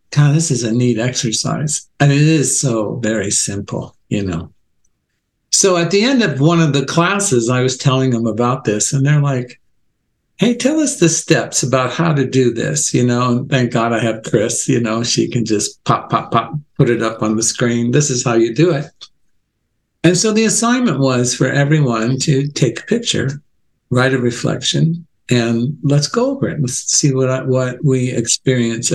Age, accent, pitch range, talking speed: 60-79, American, 125-170 Hz, 200 wpm